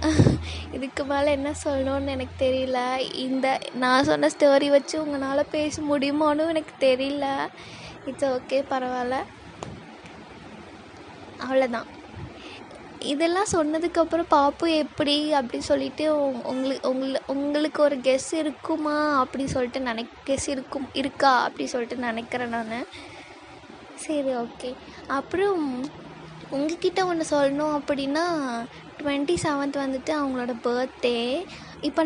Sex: female